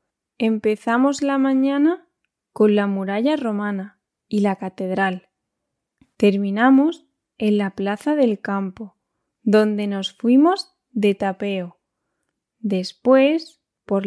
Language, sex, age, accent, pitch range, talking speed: English, female, 20-39, Spanish, 200-270 Hz, 100 wpm